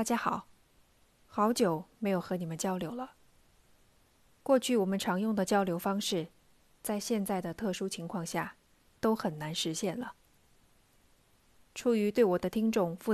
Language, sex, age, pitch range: Chinese, female, 20-39, 180-220 Hz